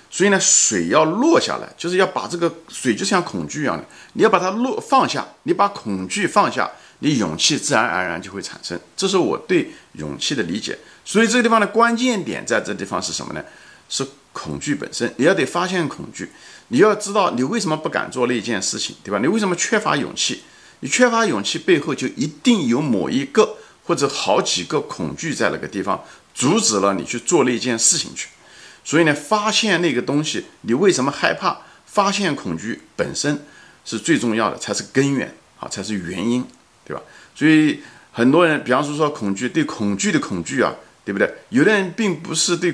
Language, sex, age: Chinese, male, 50-69